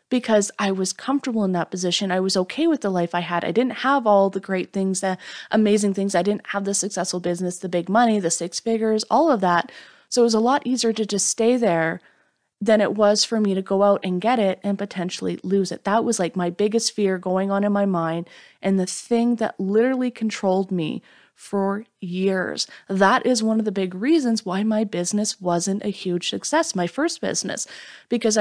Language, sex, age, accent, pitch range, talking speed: English, female, 20-39, American, 185-235 Hz, 220 wpm